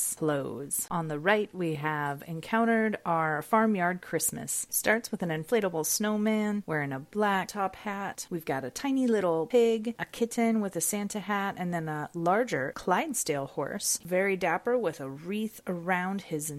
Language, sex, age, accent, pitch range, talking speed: English, female, 30-49, American, 155-215 Hz, 165 wpm